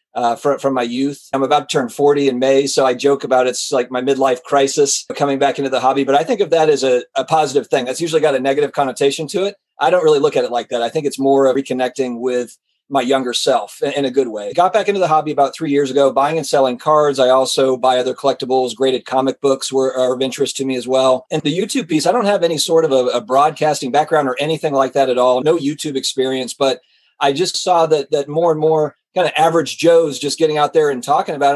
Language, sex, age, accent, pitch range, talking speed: English, male, 30-49, American, 135-165 Hz, 260 wpm